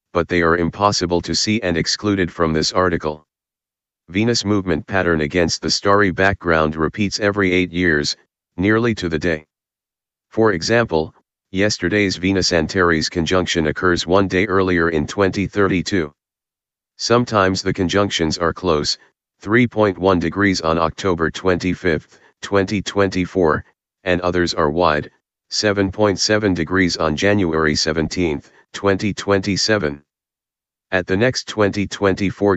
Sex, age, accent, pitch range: male, 40-59, American, 85-100 Hz